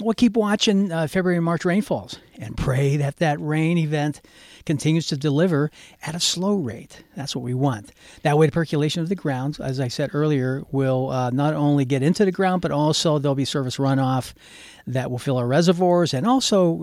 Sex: male